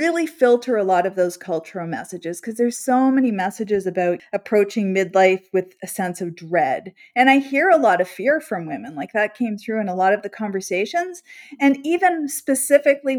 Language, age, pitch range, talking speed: English, 40-59, 185-290 Hz, 195 wpm